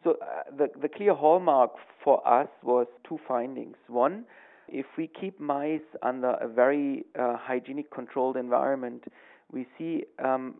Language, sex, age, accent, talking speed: English, male, 40-59, German, 145 wpm